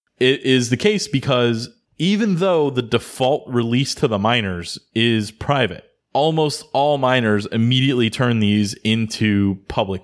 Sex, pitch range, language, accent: male, 105-125 Hz, English, American